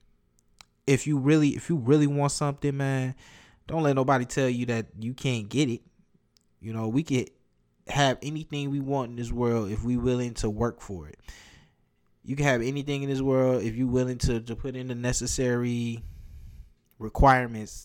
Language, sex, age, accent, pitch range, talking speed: English, male, 20-39, American, 115-140 Hz, 180 wpm